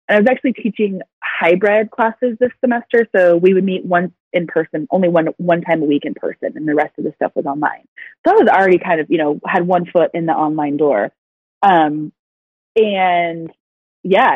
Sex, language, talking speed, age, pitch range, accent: female, English, 210 wpm, 20-39, 160-205 Hz, American